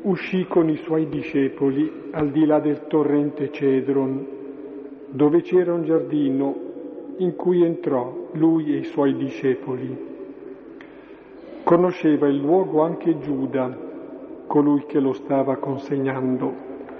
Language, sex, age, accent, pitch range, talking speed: Italian, male, 50-69, native, 140-170 Hz, 115 wpm